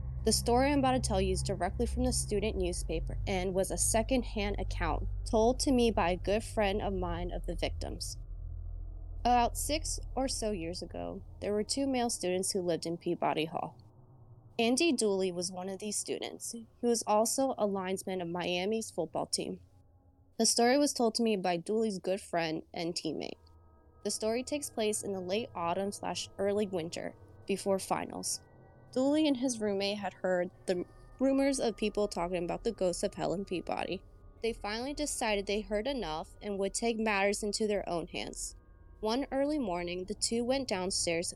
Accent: American